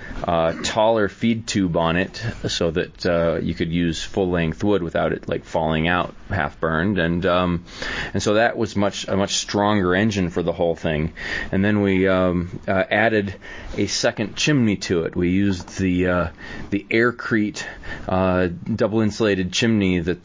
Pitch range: 85-100 Hz